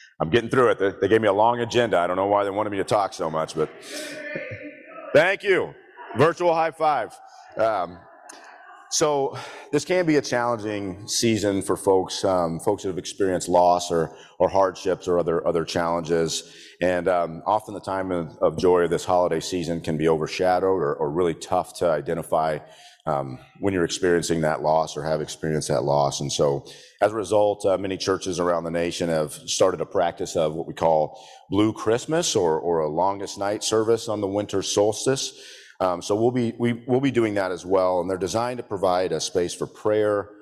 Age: 40-59